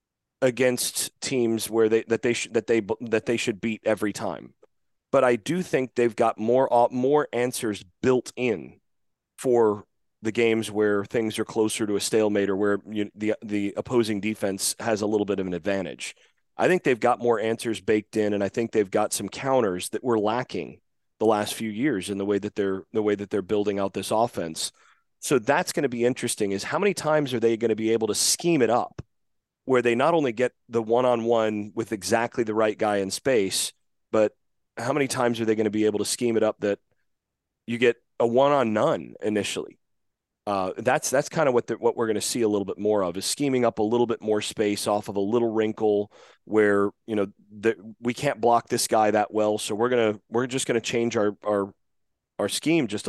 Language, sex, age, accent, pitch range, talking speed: English, male, 30-49, American, 105-120 Hz, 215 wpm